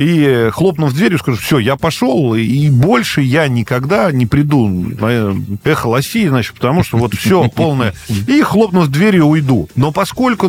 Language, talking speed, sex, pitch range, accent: Russian, 160 wpm, male, 120-170 Hz, native